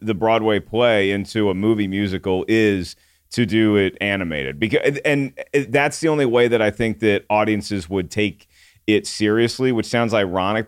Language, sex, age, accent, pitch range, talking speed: English, male, 40-59, American, 95-115 Hz, 170 wpm